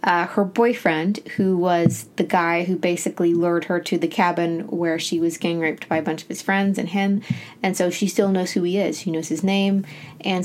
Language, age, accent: English, 20-39, American